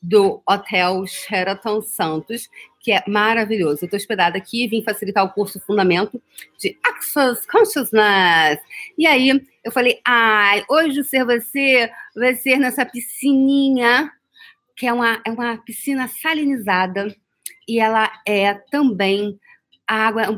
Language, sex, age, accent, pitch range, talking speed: Portuguese, female, 40-59, Brazilian, 200-270 Hz, 135 wpm